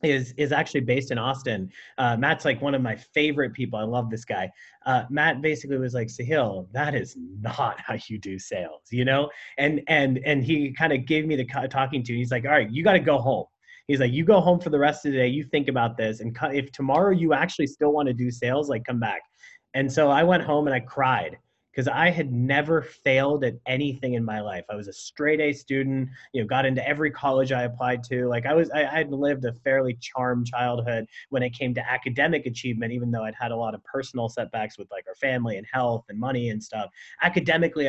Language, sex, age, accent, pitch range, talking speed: English, male, 30-49, American, 125-150 Hz, 240 wpm